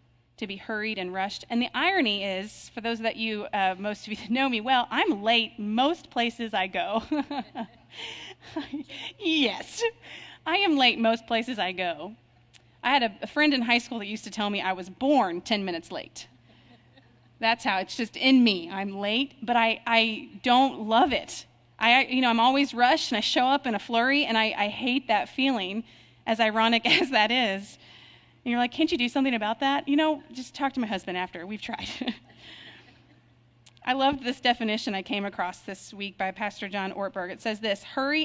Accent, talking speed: American, 200 wpm